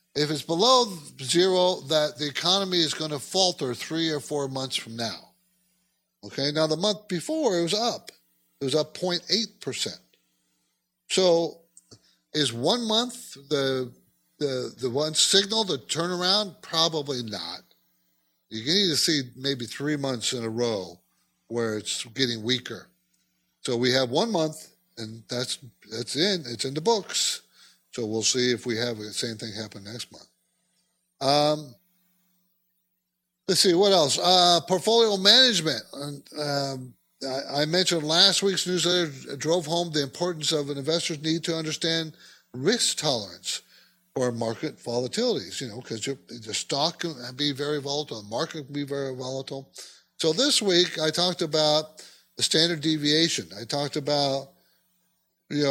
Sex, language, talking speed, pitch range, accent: male, English, 155 wpm, 125-175 Hz, American